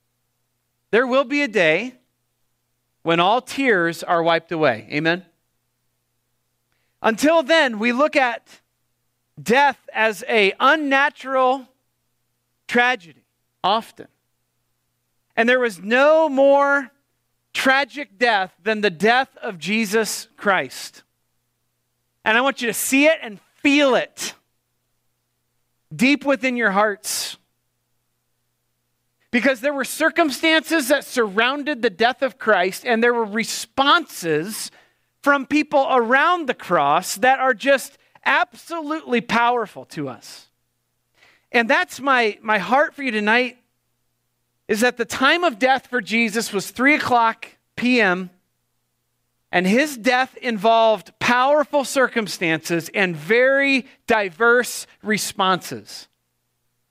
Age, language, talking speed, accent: 40-59, English, 110 wpm, American